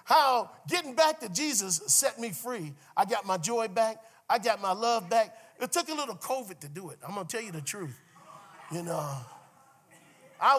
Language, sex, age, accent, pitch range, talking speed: English, male, 40-59, American, 195-265 Hz, 205 wpm